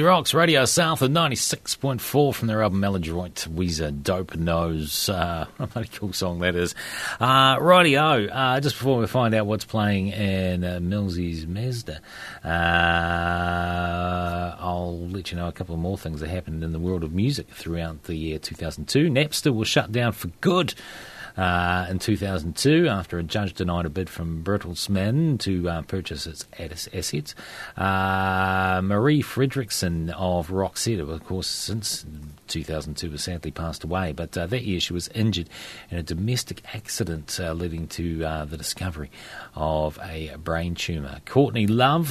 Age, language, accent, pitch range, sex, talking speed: 30-49, English, Australian, 85-110 Hz, male, 155 wpm